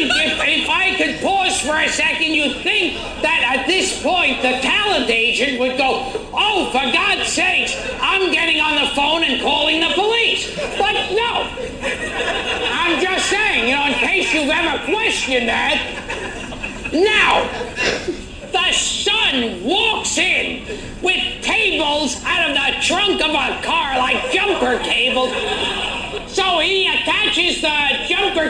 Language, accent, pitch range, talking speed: English, American, 270-370 Hz, 140 wpm